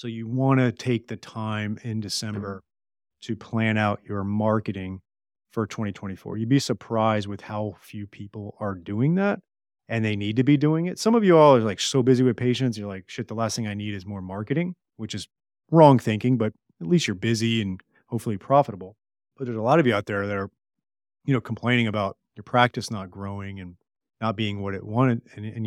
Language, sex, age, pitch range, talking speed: English, male, 30-49, 100-125 Hz, 215 wpm